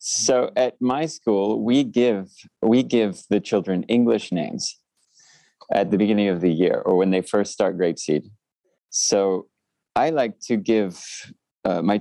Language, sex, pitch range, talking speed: English, male, 95-115 Hz, 160 wpm